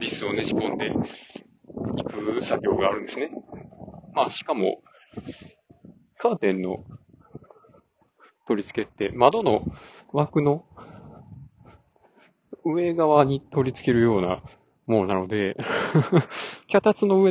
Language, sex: Japanese, male